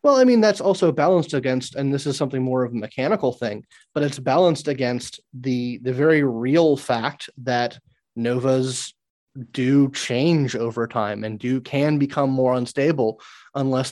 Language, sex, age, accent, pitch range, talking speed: English, male, 30-49, American, 120-145 Hz, 165 wpm